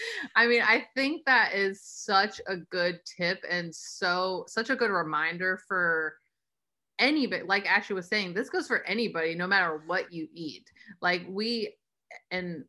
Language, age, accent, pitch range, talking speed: English, 30-49, American, 175-235 Hz, 160 wpm